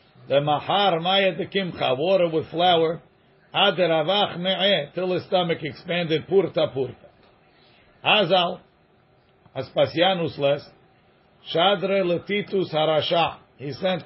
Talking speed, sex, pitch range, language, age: 105 wpm, male, 145-185 Hz, English, 50-69